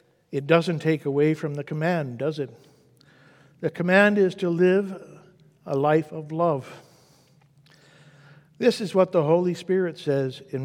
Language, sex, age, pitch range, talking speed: English, male, 60-79, 145-185 Hz, 145 wpm